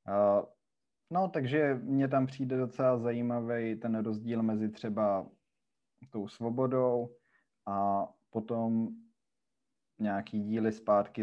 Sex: male